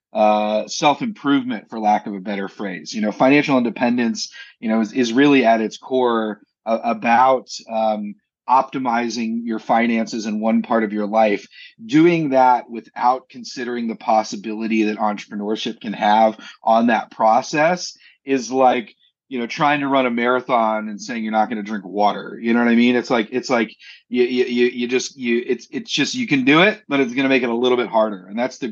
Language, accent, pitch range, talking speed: English, American, 110-135 Hz, 205 wpm